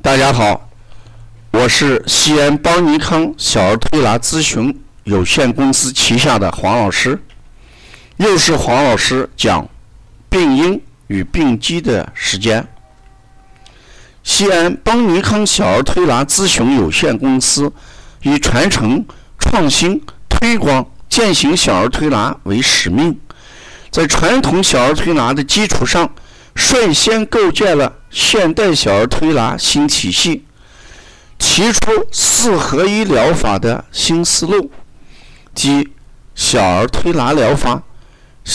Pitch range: 115-165 Hz